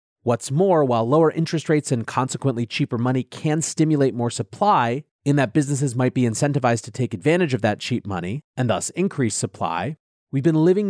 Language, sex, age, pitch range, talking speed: English, male, 30-49, 115-150 Hz, 185 wpm